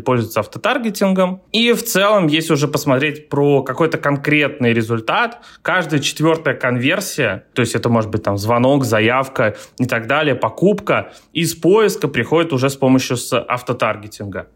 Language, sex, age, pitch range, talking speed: Russian, male, 20-39, 125-150 Hz, 140 wpm